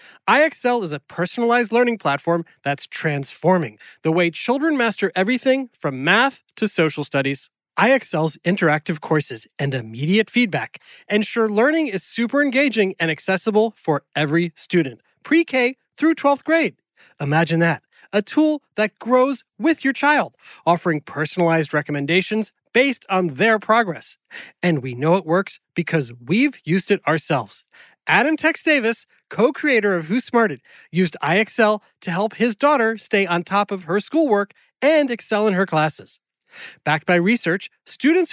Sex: male